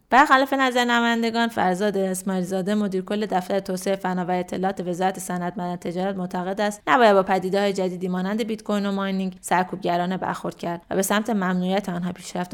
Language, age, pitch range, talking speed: Persian, 20-39, 185-215 Hz, 180 wpm